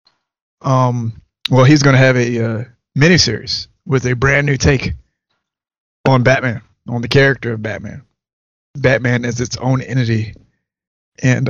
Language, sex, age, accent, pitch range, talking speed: English, male, 30-49, American, 115-130 Hz, 140 wpm